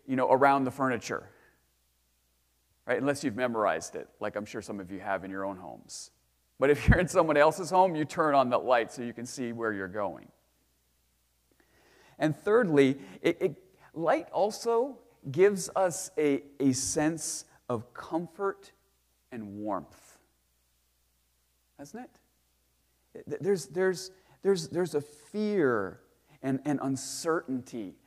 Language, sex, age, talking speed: English, male, 40-59, 140 wpm